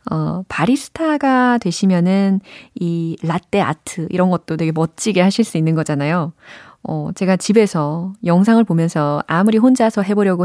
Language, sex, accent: Korean, female, native